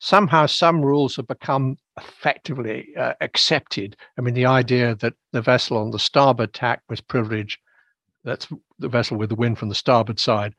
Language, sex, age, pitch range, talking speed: English, male, 60-79, 110-135 Hz, 175 wpm